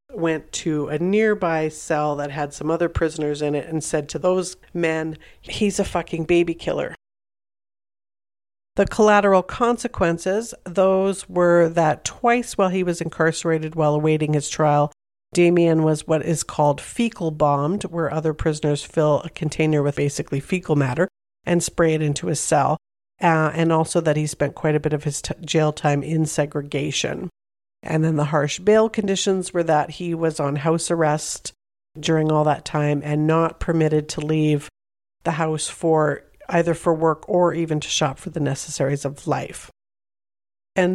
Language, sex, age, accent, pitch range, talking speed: English, female, 50-69, American, 150-175 Hz, 165 wpm